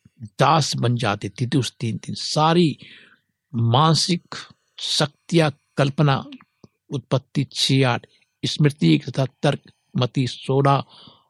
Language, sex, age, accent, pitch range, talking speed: Hindi, male, 60-79, native, 120-140 Hz, 70 wpm